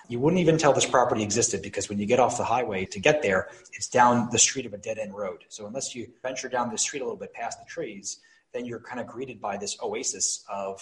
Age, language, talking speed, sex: 30-49, English, 265 wpm, male